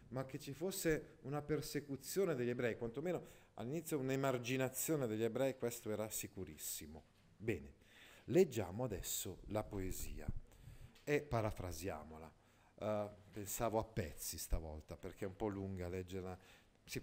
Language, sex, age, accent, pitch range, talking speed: Italian, male, 50-69, native, 100-130 Hz, 125 wpm